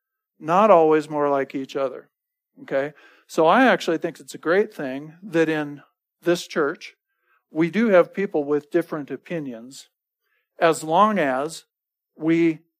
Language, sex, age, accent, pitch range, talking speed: English, male, 50-69, American, 145-175 Hz, 140 wpm